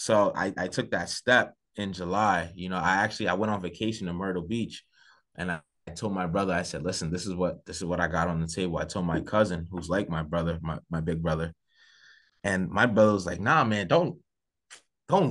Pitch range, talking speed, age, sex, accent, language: 85-110 Hz, 235 wpm, 20-39, male, American, English